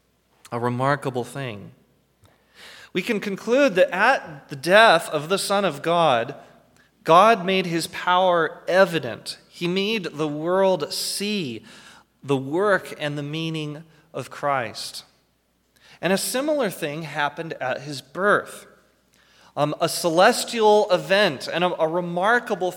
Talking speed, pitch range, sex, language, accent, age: 125 wpm, 140-195 Hz, male, English, American, 30-49